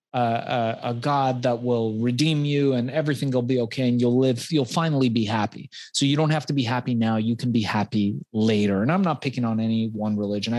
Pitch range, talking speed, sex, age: 110-135 Hz, 230 wpm, male, 30-49